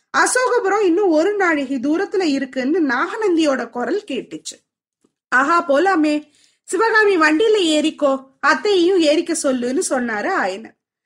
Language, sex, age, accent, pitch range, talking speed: Tamil, female, 20-39, native, 275-365 Hz, 105 wpm